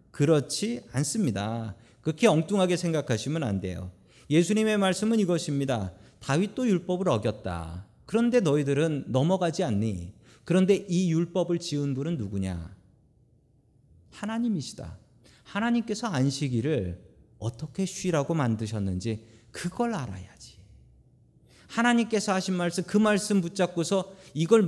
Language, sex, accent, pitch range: Korean, male, native, 120-190 Hz